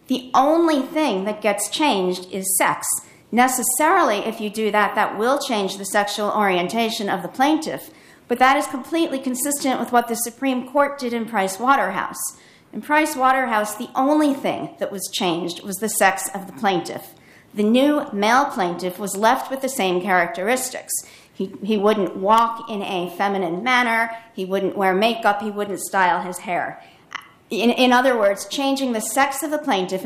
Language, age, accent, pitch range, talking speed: English, 50-69, American, 200-255 Hz, 175 wpm